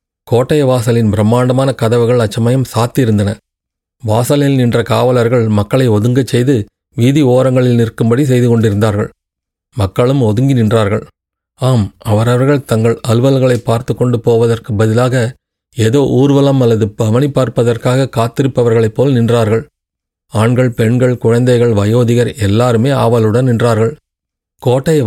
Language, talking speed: Tamil, 105 wpm